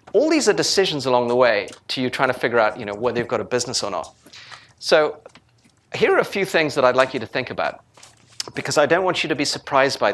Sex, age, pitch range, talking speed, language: male, 40-59, 115-150 Hz, 260 wpm, English